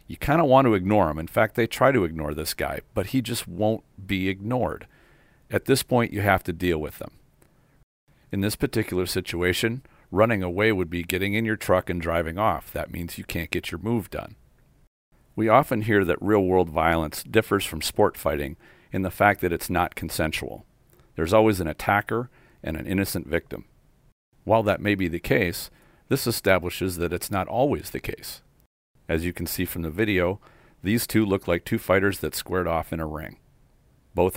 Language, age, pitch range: English, 40-59, 85-110 Hz